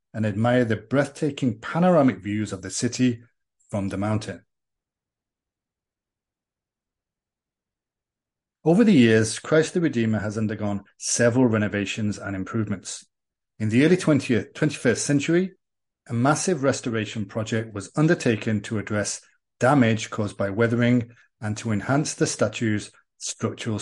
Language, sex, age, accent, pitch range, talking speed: English, male, 40-59, British, 105-130 Hz, 120 wpm